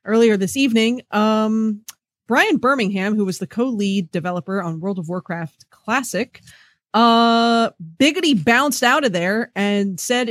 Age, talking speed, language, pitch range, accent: 30-49, 140 wpm, English, 200-250 Hz, American